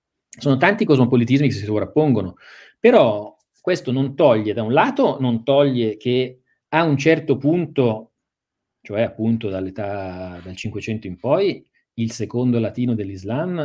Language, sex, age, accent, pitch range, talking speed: Italian, male, 40-59, native, 95-125 Hz, 135 wpm